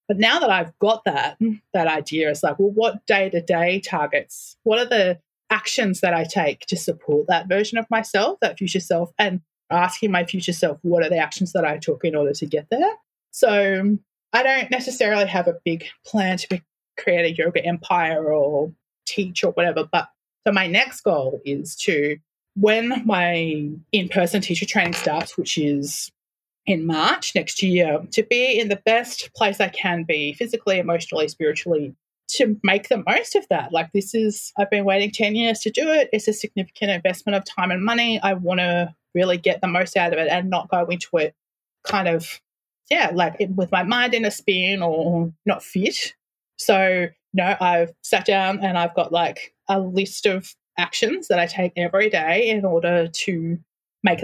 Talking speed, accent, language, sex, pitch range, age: 185 wpm, Australian, English, female, 170-210 Hz, 30-49